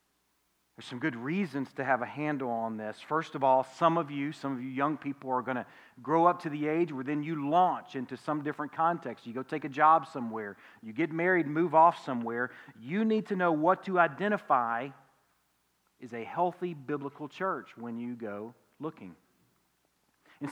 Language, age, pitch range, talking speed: English, 40-59, 120-160 Hz, 190 wpm